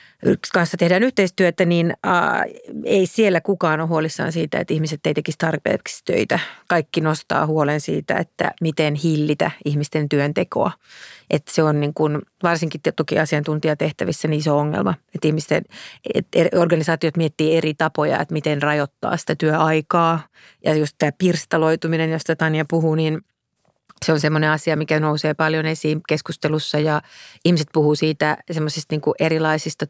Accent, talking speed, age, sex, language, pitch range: native, 125 wpm, 30-49, female, Finnish, 150-165 Hz